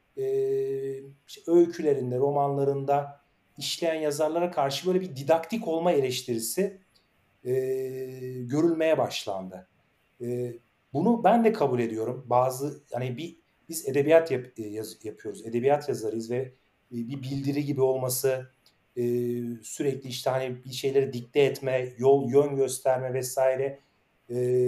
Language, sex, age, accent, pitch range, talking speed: Turkish, male, 40-59, native, 125-155 Hz, 120 wpm